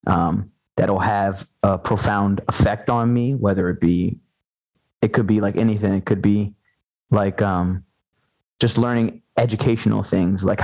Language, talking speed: English, 145 wpm